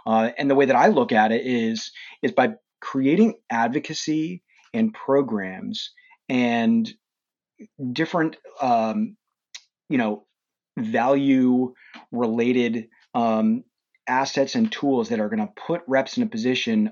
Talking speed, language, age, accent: 130 wpm, English, 30-49, American